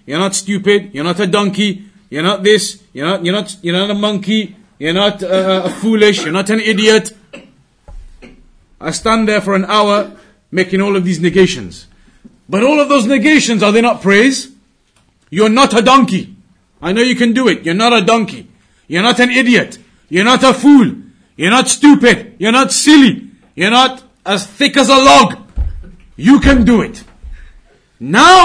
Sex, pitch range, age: male, 190-245 Hz, 30-49